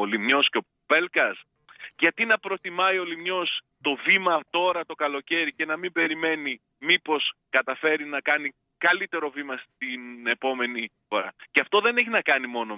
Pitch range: 135-200 Hz